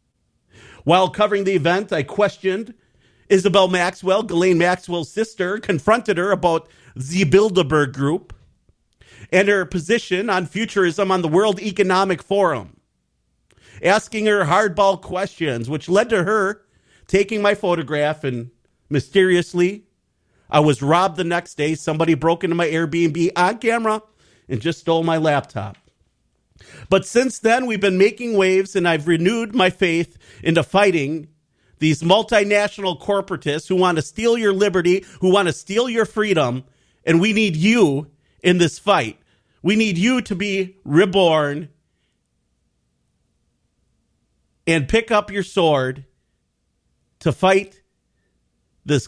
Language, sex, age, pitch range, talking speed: English, male, 40-59, 145-200 Hz, 130 wpm